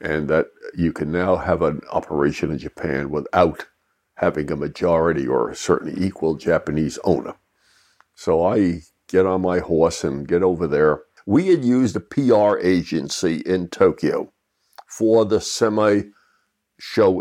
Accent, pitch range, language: American, 90-115 Hz, English